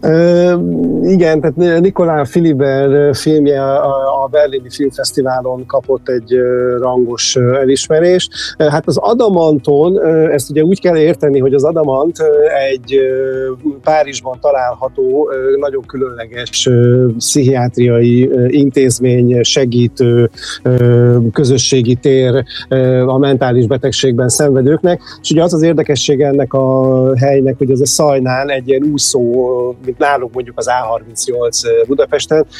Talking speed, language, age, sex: 105 wpm, Hungarian, 50-69, male